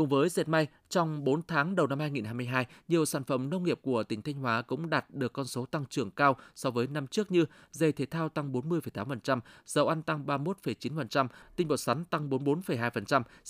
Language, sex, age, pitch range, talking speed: Vietnamese, male, 20-39, 130-165 Hz, 205 wpm